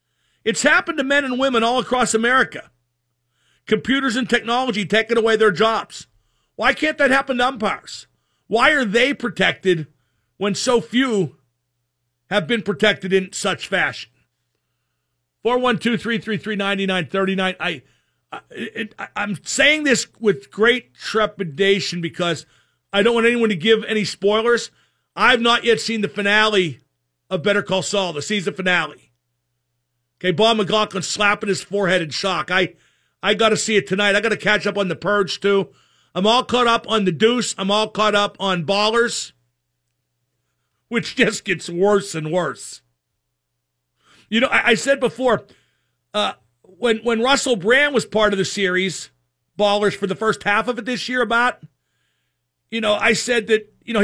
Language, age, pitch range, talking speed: English, 50-69, 160-230 Hz, 155 wpm